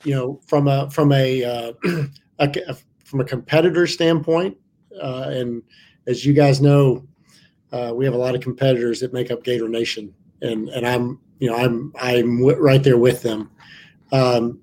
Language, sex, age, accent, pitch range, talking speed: English, male, 40-59, American, 120-145 Hz, 170 wpm